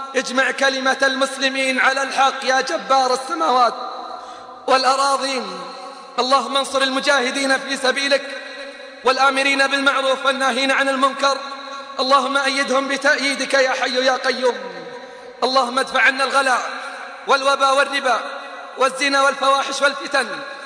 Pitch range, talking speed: 250-275 Hz, 100 wpm